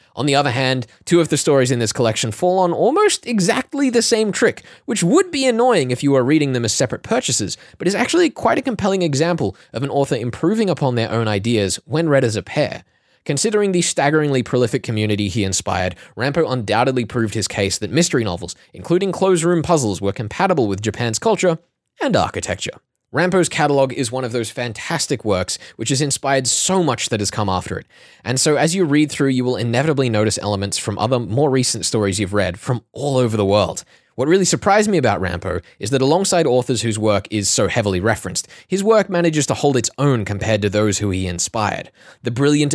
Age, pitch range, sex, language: 20-39, 110-155 Hz, male, English